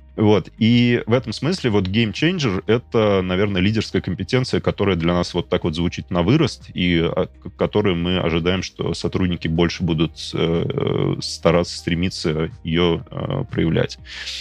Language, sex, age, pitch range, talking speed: Russian, male, 20-39, 85-100 Hz, 155 wpm